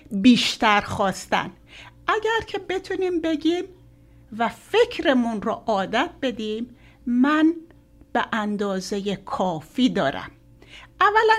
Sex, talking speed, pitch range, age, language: female, 90 wpm, 215-310 Hz, 60-79, Persian